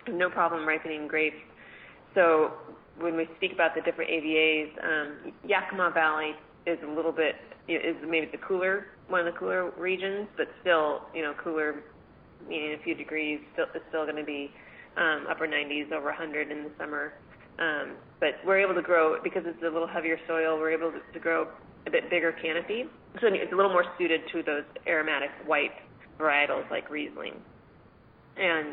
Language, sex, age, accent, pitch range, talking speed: English, female, 30-49, American, 155-170 Hz, 195 wpm